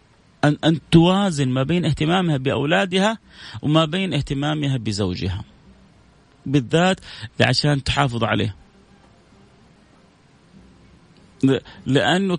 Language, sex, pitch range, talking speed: Arabic, male, 140-195 Hz, 75 wpm